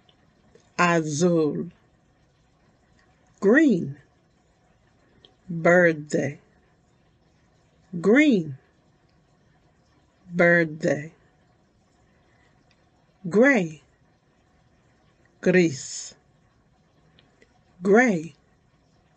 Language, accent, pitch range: English, American, 155-185 Hz